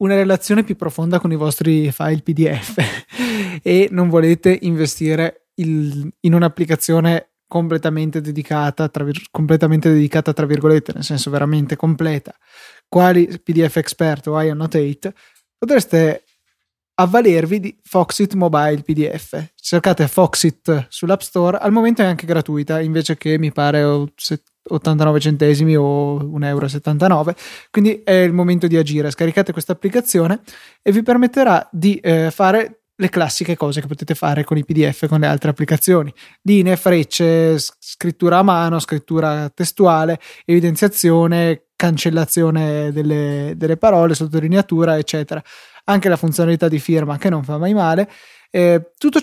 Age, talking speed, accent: 20-39, 135 wpm, native